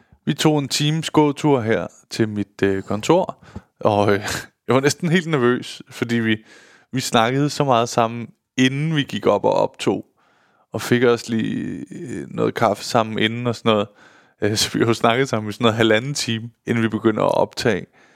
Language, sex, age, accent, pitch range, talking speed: Danish, male, 20-39, native, 115-145 Hz, 190 wpm